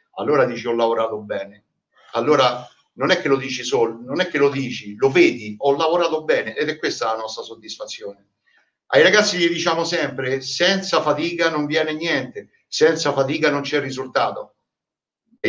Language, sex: English, male